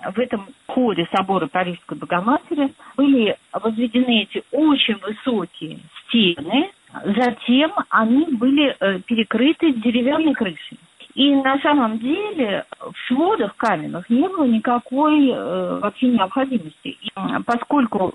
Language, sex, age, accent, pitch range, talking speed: Russian, female, 40-59, native, 200-275 Hz, 105 wpm